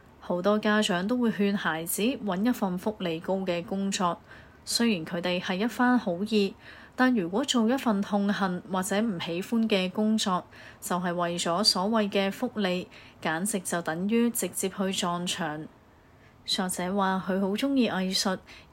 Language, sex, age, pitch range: Chinese, female, 30-49, 175-215 Hz